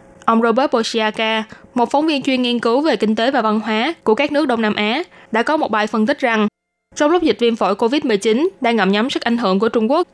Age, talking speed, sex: 10-29, 255 wpm, female